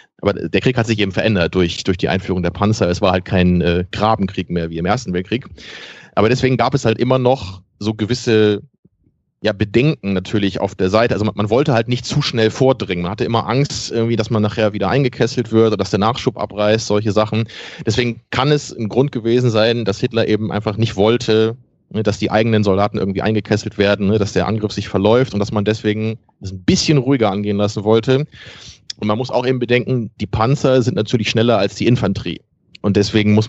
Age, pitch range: 30-49, 100-115 Hz